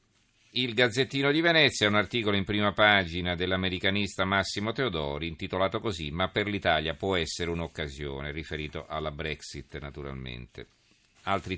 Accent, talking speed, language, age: native, 135 wpm, Italian, 40-59